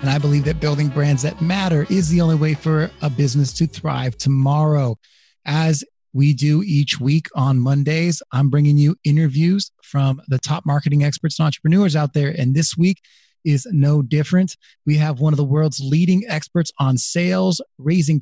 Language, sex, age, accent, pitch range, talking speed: English, male, 30-49, American, 135-160 Hz, 180 wpm